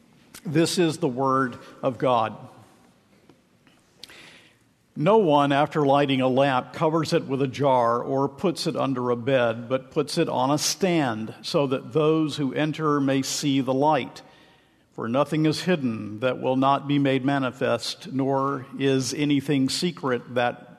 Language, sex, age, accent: English, male, 50-69, American